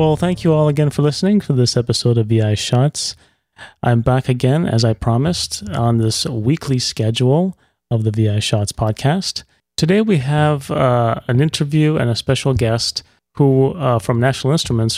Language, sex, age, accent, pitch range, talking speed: English, male, 30-49, American, 115-140 Hz, 170 wpm